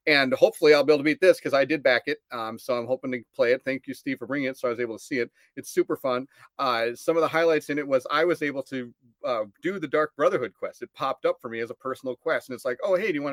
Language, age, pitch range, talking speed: English, 30-49, 130-170 Hz, 320 wpm